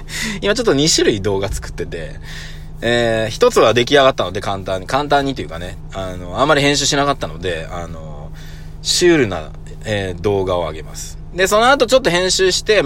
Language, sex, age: Japanese, male, 20-39